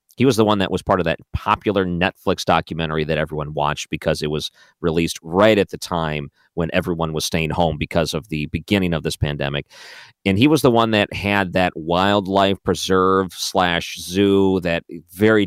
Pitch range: 85-105 Hz